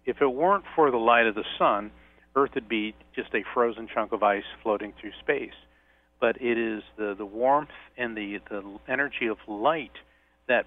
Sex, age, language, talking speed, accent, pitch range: male, 50-69, English, 190 wpm, American, 100-120 Hz